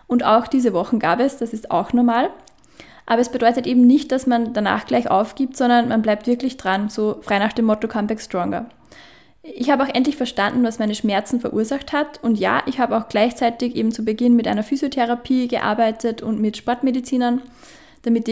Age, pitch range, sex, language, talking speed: 10-29, 220-245 Hz, female, German, 195 wpm